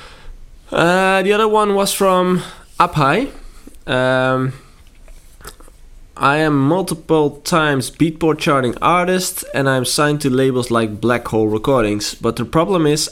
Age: 20-39